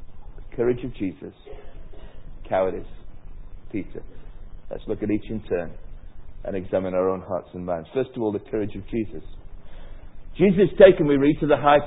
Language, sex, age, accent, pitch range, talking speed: English, male, 50-69, British, 120-150 Hz, 160 wpm